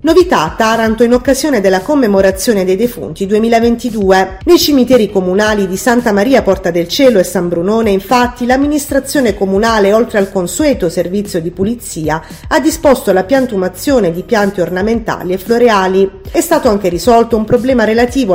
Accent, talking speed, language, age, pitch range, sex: native, 155 wpm, Italian, 40-59, 190-250 Hz, female